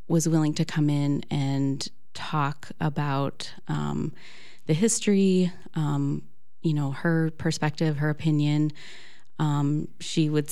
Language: English